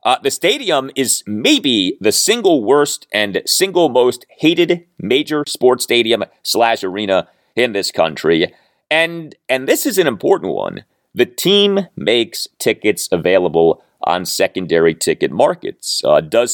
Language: English